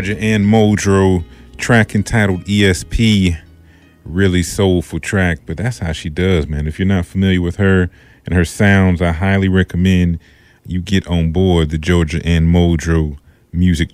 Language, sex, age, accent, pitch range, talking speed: English, male, 30-49, American, 85-100 Hz, 155 wpm